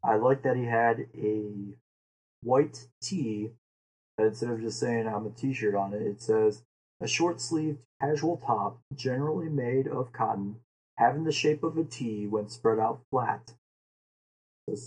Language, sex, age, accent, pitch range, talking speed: English, male, 20-39, American, 105-130 Hz, 155 wpm